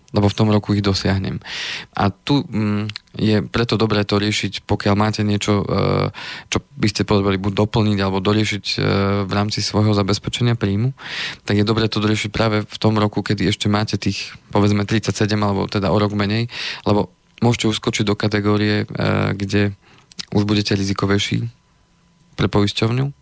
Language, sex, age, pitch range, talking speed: Slovak, male, 20-39, 100-110 Hz, 155 wpm